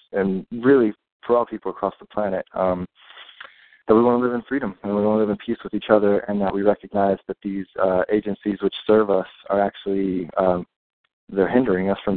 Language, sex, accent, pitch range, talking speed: English, male, American, 95-110 Hz, 215 wpm